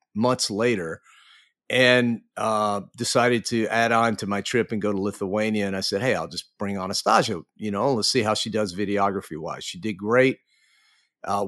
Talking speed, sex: 190 wpm, male